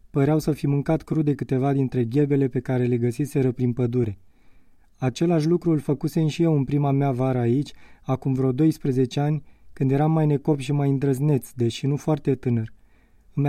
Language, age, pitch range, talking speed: Romanian, 20-39, 130-155 Hz, 185 wpm